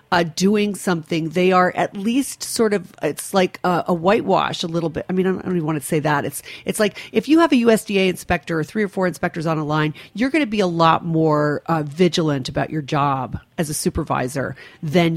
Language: English